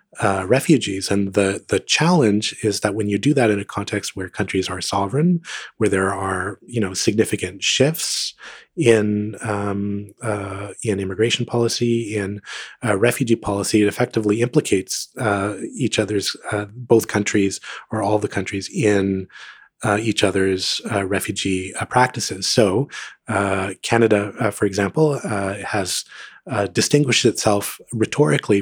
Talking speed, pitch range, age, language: 145 wpm, 100-115 Hz, 30-49, English